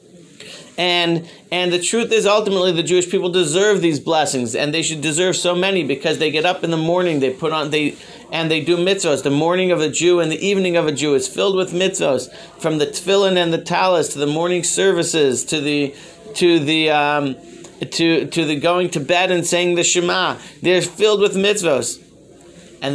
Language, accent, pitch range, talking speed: English, American, 145-180 Hz, 205 wpm